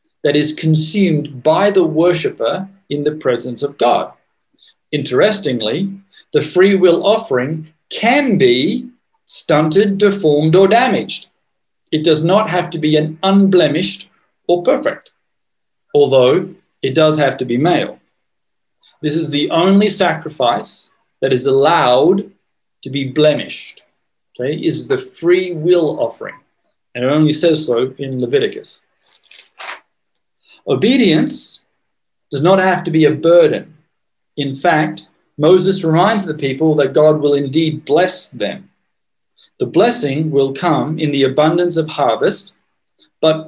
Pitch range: 145-190 Hz